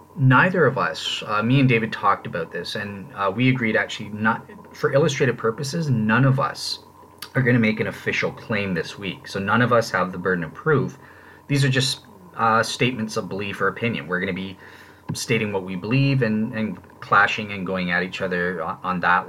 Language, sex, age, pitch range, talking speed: English, male, 30-49, 95-130 Hz, 210 wpm